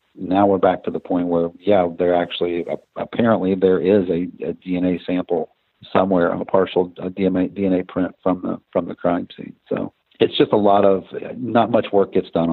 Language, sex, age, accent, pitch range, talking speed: English, male, 50-69, American, 85-95 Hz, 185 wpm